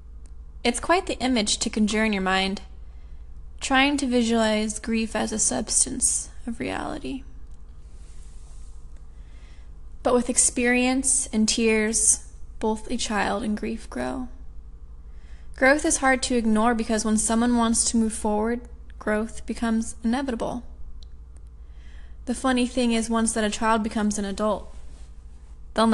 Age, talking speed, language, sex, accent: 10-29, 130 wpm, English, female, American